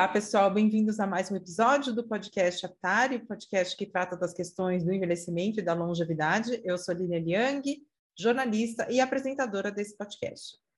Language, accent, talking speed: Portuguese, Brazilian, 160 wpm